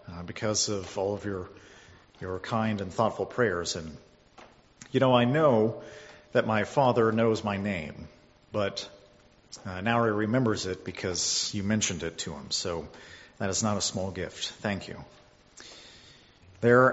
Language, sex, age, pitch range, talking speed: English, male, 40-59, 105-130 Hz, 155 wpm